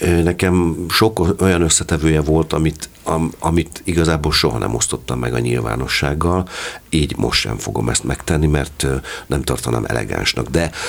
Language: Hungarian